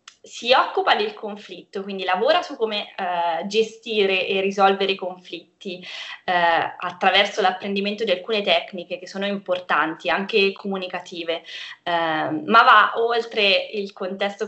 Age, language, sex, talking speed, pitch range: 20-39, Italian, female, 130 wpm, 180-215 Hz